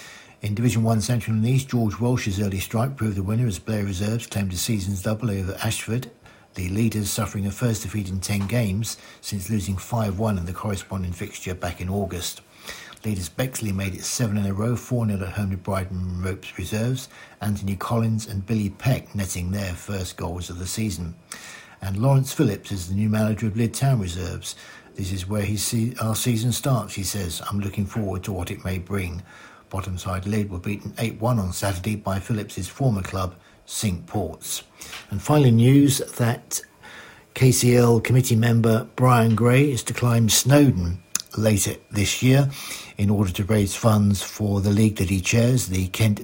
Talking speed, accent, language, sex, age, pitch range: 180 wpm, British, English, male, 60-79, 95-115 Hz